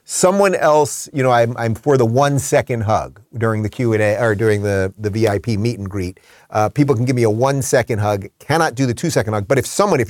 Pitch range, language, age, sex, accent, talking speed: 110-145 Hz, English, 30-49, male, American, 245 wpm